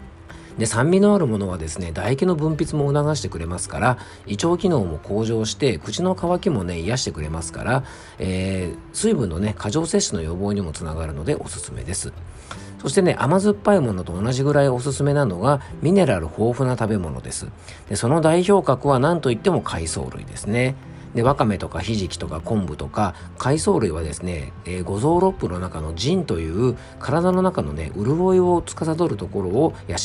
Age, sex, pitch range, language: 50-69, male, 90-145 Hz, Japanese